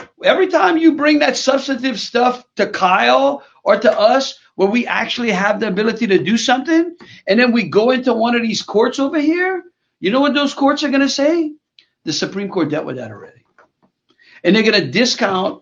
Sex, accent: male, American